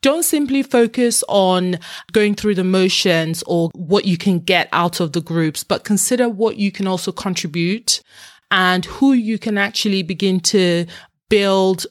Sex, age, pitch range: female, 30-49, 175-225 Hz